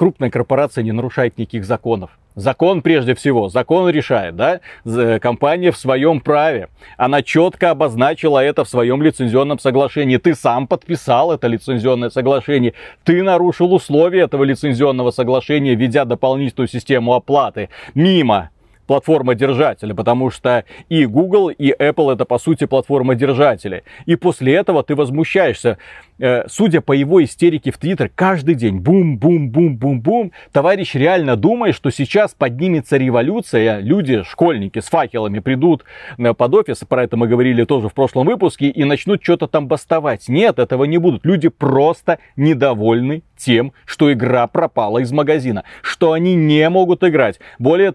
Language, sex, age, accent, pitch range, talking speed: Russian, male, 30-49, native, 125-165 Hz, 140 wpm